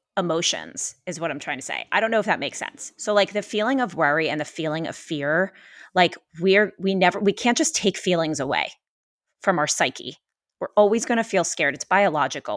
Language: English